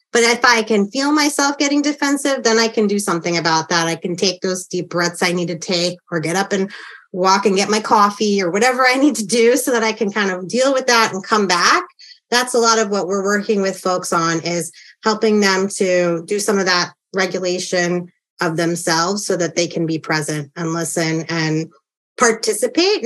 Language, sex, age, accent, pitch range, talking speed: English, female, 30-49, American, 175-240 Hz, 215 wpm